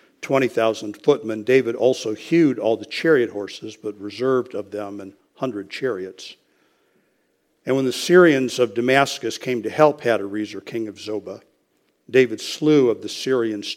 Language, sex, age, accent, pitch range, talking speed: English, male, 60-79, American, 105-130 Hz, 150 wpm